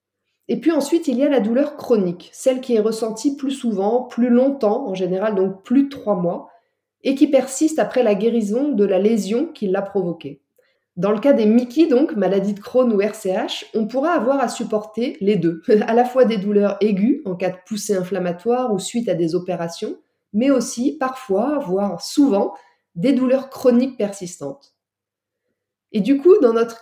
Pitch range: 195-265 Hz